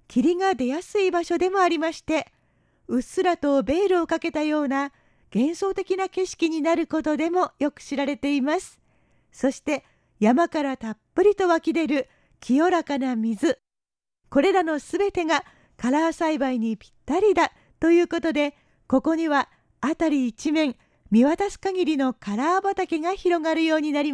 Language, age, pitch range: Japanese, 40-59, 280-345 Hz